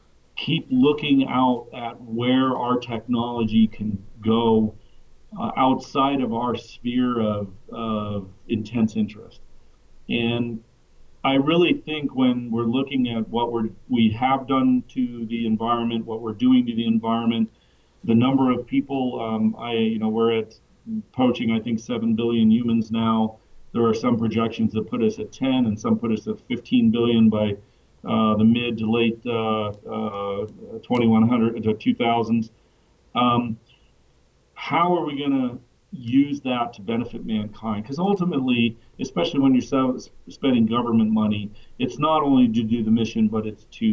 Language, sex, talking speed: English, male, 155 wpm